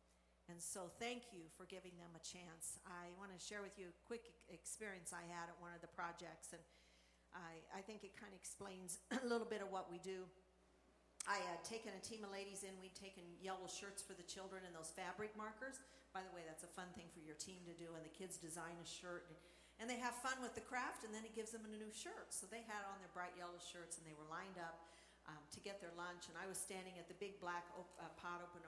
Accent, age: American, 50-69